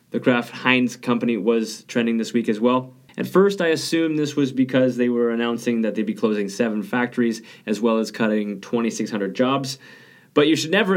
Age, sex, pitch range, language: 20-39, male, 110-135 Hz, English